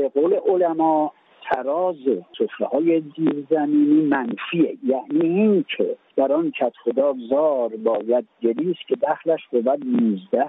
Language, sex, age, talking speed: Persian, male, 50-69, 120 wpm